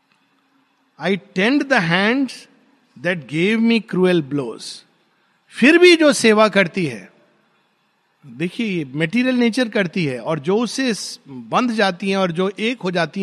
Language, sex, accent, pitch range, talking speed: Hindi, male, native, 190-265 Hz, 120 wpm